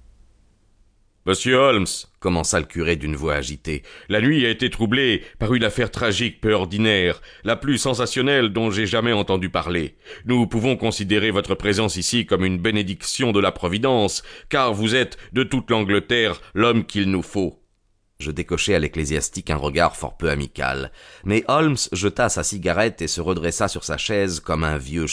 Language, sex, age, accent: French, male, 40-59, French